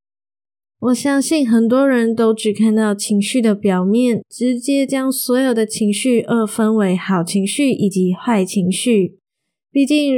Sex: female